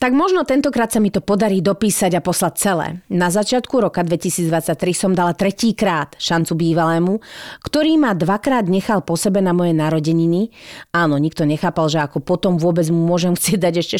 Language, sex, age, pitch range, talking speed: Slovak, female, 40-59, 170-220 Hz, 175 wpm